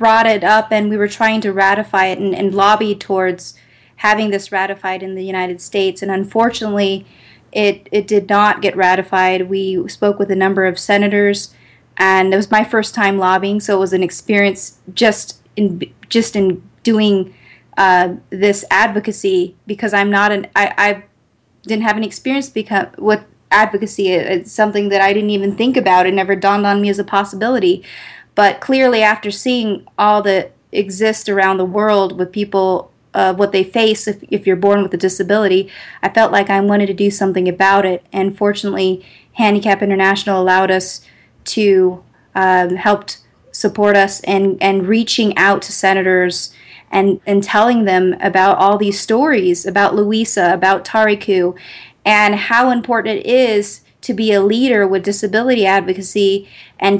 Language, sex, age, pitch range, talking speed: English, female, 20-39, 190-210 Hz, 165 wpm